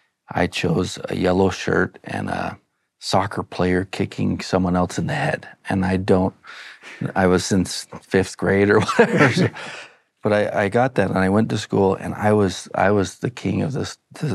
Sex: male